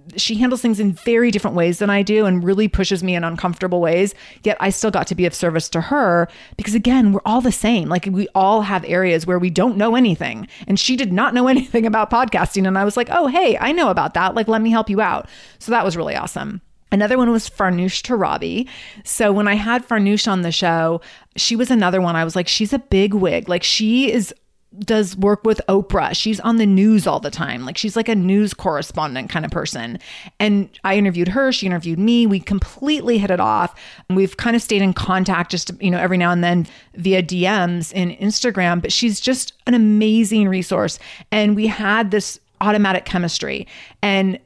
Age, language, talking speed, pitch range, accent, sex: 30-49, English, 220 wpm, 180-220 Hz, American, female